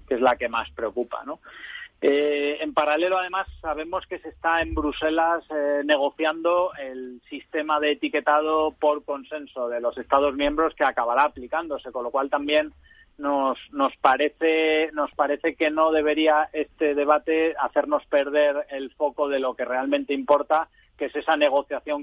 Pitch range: 135-155 Hz